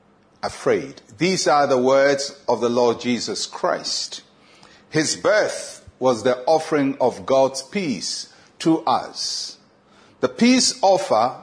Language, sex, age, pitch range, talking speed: English, male, 50-69, 130-170 Hz, 120 wpm